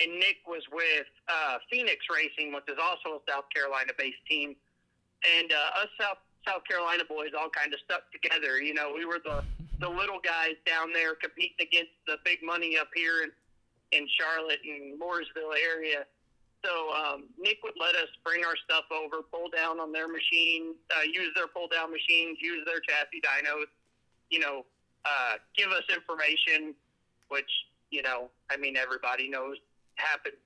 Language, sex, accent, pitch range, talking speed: English, male, American, 140-170 Hz, 175 wpm